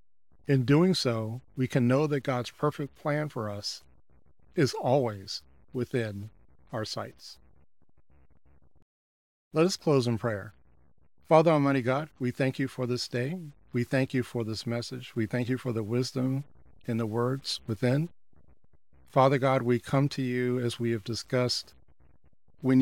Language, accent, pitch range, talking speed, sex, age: English, American, 115-135 Hz, 155 wpm, male, 50-69